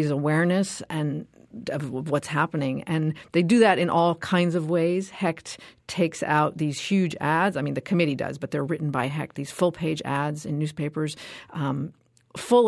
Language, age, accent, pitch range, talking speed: English, 50-69, American, 145-170 Hz, 175 wpm